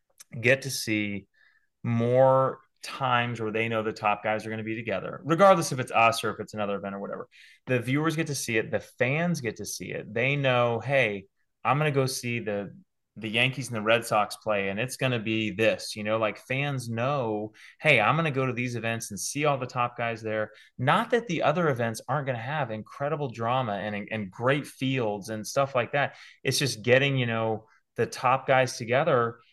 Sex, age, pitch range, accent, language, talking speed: male, 30-49, 110-135 Hz, American, English, 220 wpm